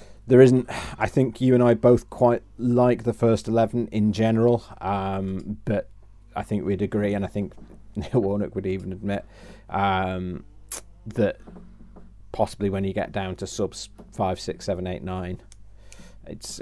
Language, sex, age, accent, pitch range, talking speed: English, male, 30-49, British, 95-110 Hz, 160 wpm